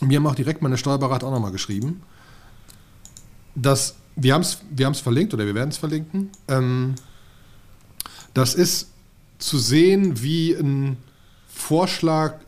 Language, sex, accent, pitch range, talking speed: German, male, German, 120-155 Hz, 130 wpm